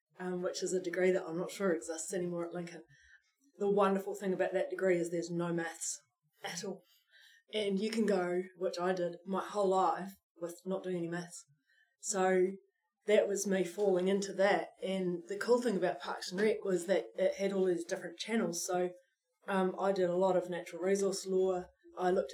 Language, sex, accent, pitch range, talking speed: English, female, Australian, 175-200 Hz, 200 wpm